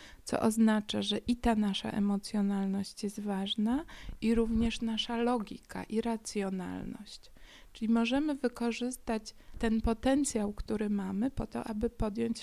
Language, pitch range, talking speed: Polish, 205-235 Hz, 125 wpm